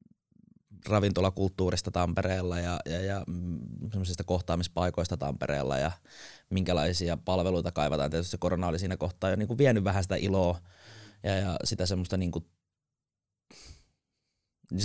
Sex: male